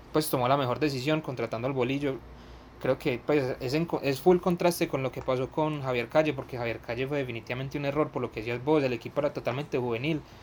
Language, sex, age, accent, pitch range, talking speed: Spanish, male, 20-39, Colombian, 120-145 Hz, 230 wpm